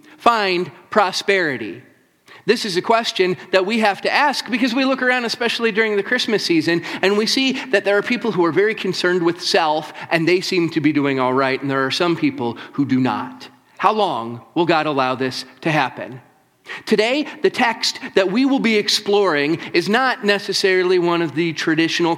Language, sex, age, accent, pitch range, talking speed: English, male, 40-59, American, 170-225 Hz, 195 wpm